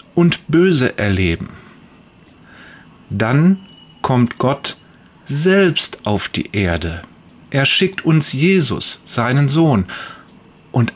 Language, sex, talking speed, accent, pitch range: German, male, 95 wpm, German, 130-180 Hz